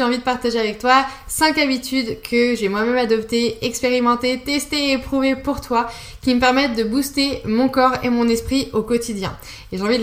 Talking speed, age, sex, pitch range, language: 205 wpm, 20-39, female, 230-260 Hz, French